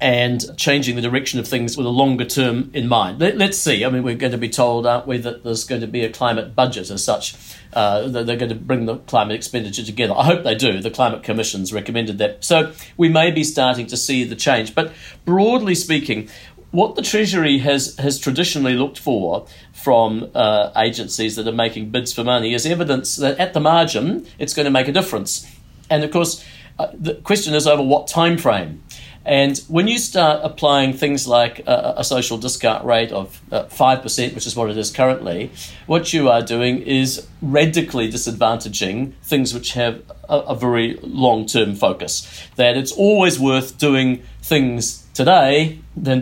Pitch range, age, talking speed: 115-140 Hz, 50-69, 190 wpm